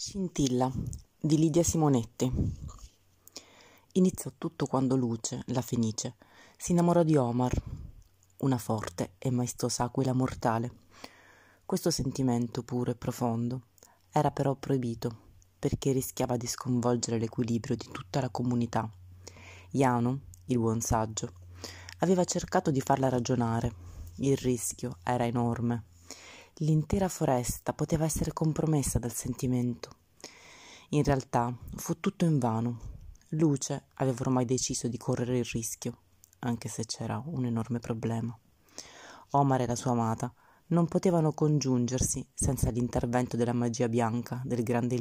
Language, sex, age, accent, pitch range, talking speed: Italian, female, 30-49, native, 115-135 Hz, 125 wpm